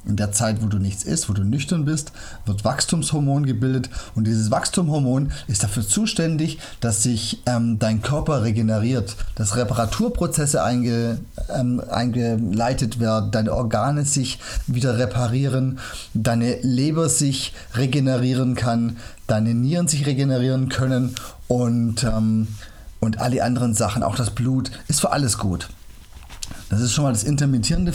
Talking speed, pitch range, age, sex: 135 wpm, 110-140 Hz, 30-49, male